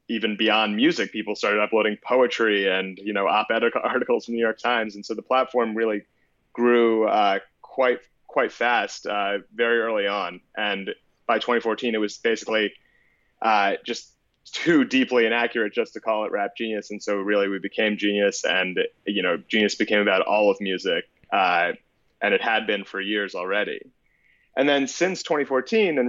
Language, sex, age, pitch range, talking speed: English, male, 30-49, 105-120 Hz, 175 wpm